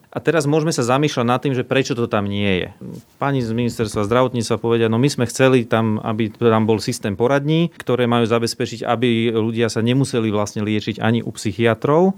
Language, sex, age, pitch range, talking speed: Slovak, male, 30-49, 110-140 Hz, 195 wpm